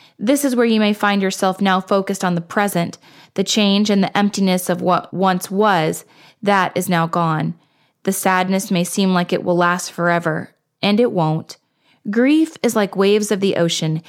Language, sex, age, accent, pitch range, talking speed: English, female, 20-39, American, 175-215 Hz, 190 wpm